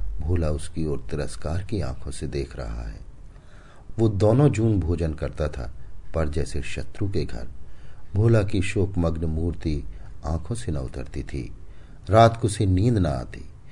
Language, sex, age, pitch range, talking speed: Hindi, male, 50-69, 75-95 Hz, 160 wpm